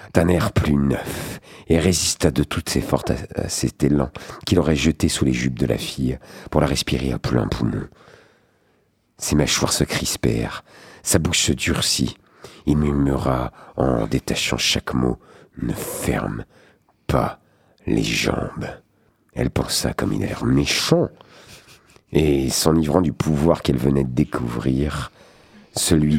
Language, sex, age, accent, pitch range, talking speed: French, male, 50-69, French, 65-85 Hz, 140 wpm